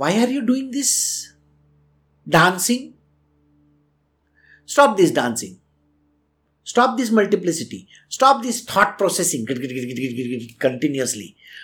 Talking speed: 90 wpm